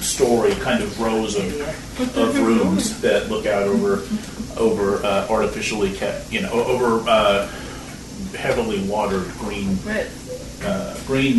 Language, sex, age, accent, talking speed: English, male, 40-59, American, 125 wpm